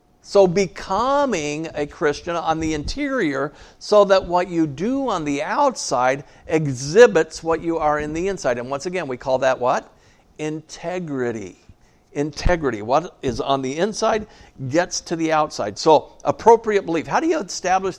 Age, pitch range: 50-69, 145-180 Hz